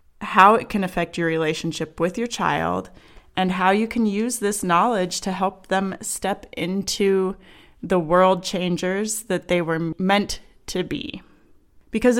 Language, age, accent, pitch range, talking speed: English, 20-39, American, 180-225 Hz, 155 wpm